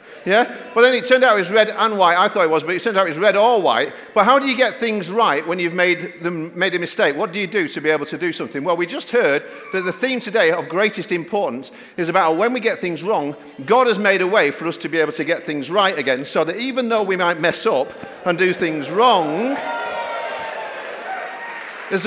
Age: 50-69